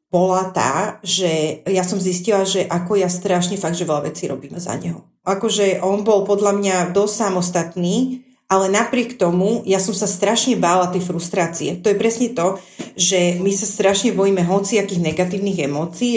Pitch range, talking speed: 180-215 Hz, 175 wpm